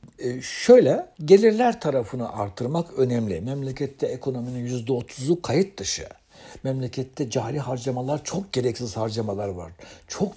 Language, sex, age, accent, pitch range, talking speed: Turkish, male, 60-79, native, 120-145 Hz, 105 wpm